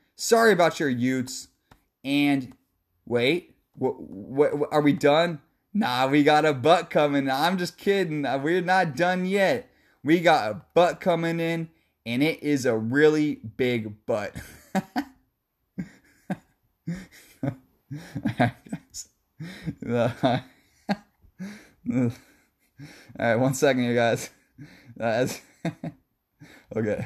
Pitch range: 125-155 Hz